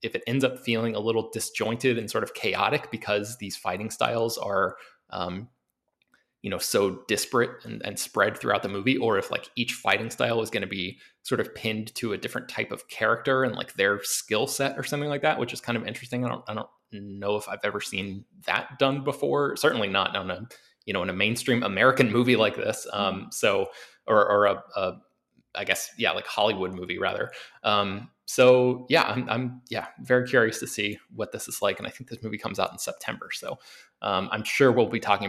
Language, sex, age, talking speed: English, male, 20-39, 220 wpm